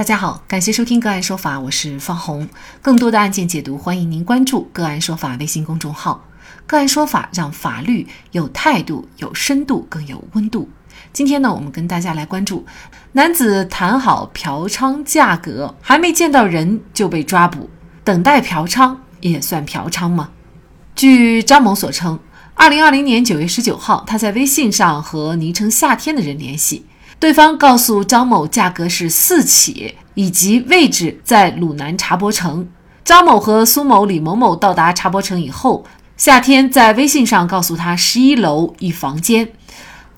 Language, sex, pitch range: Chinese, female, 170-255 Hz